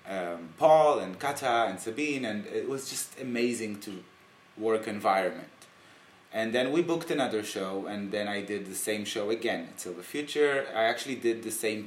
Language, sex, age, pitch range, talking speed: English, male, 20-39, 100-120 Hz, 180 wpm